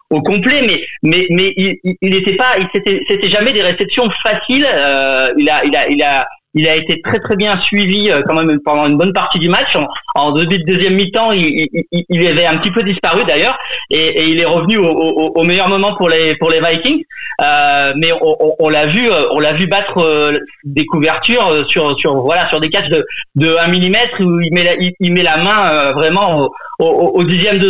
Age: 40-59